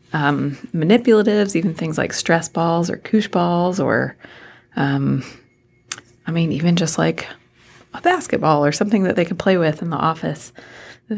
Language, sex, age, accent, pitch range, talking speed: English, female, 30-49, American, 145-185 Hz, 160 wpm